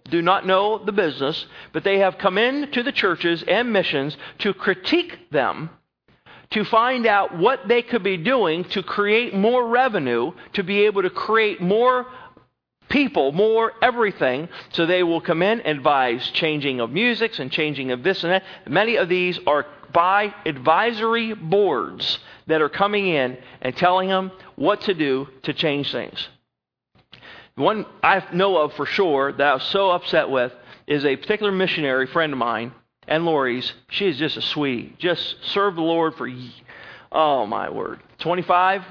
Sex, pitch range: male, 150-200 Hz